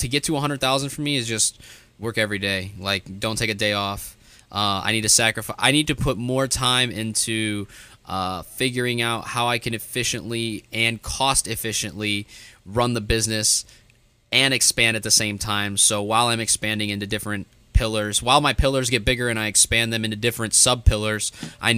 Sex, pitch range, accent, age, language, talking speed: male, 105-120 Hz, American, 20-39, English, 190 wpm